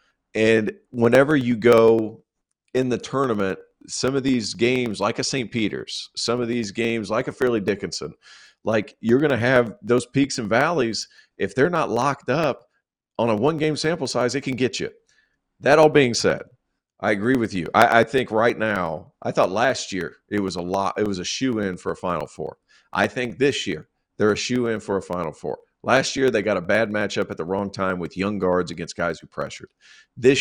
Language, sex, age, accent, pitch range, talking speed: English, male, 50-69, American, 95-125 Hz, 215 wpm